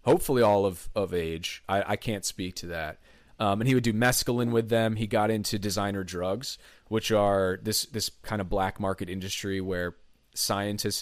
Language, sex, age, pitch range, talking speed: English, male, 30-49, 90-115 Hz, 190 wpm